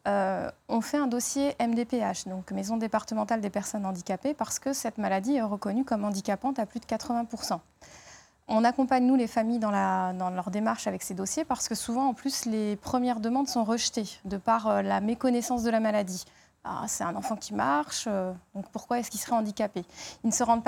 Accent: French